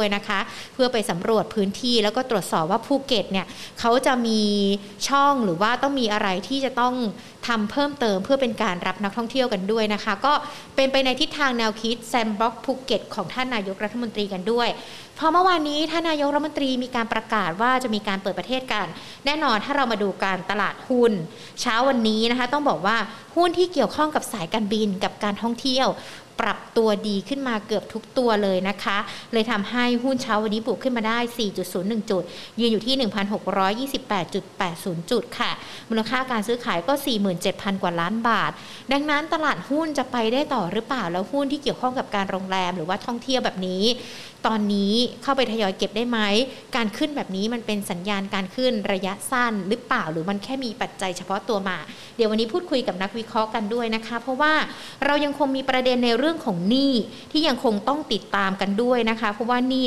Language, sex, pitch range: Thai, female, 205-255 Hz